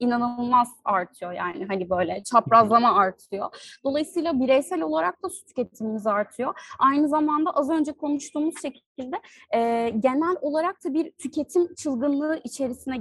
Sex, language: female, Turkish